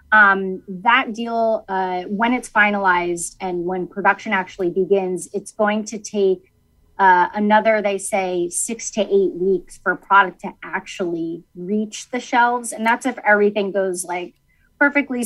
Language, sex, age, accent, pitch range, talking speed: English, female, 30-49, American, 185-220 Hz, 155 wpm